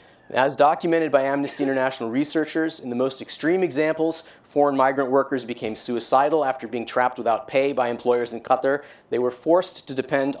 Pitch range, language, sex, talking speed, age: 120-145 Hz, English, male, 175 wpm, 30-49